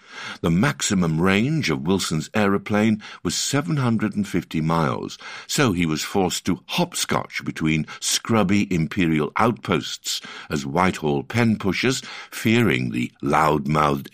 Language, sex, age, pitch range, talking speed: English, male, 60-79, 85-125 Hz, 105 wpm